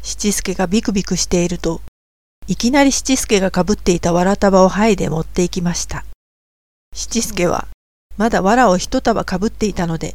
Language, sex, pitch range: Japanese, female, 165-205 Hz